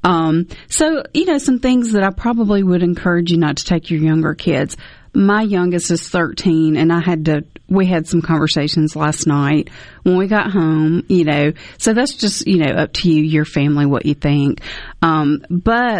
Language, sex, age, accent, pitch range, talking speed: English, female, 40-59, American, 160-195 Hz, 200 wpm